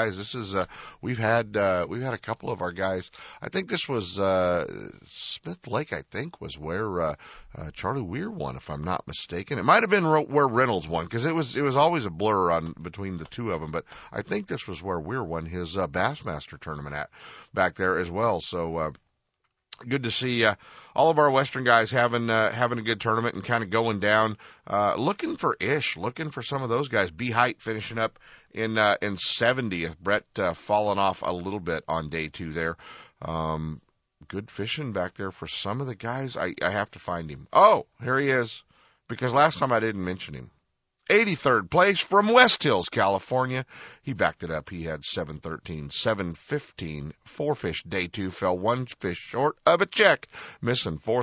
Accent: American